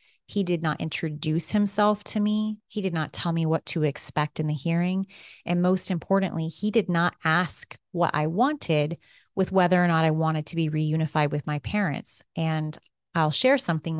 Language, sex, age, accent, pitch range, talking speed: English, female, 30-49, American, 160-185 Hz, 190 wpm